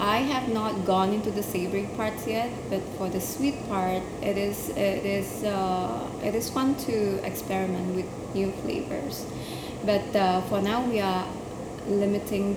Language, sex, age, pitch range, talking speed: English, female, 20-39, 185-215 Hz, 160 wpm